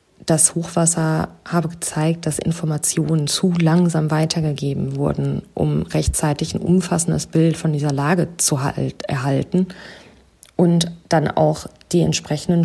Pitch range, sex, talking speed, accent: 150-175 Hz, female, 120 wpm, German